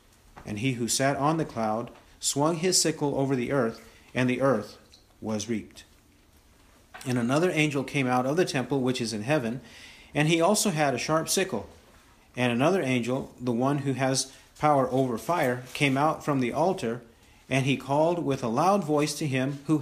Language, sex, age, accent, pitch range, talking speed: English, male, 40-59, American, 115-150 Hz, 190 wpm